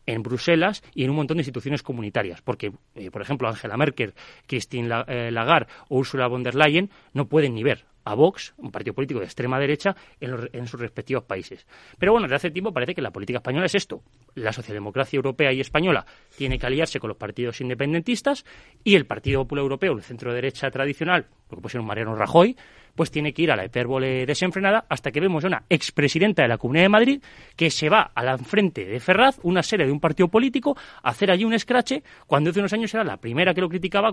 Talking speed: 220 wpm